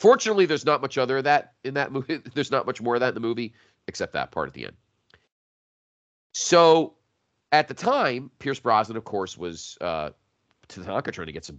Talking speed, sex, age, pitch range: 210 wpm, male, 40-59, 100-135 Hz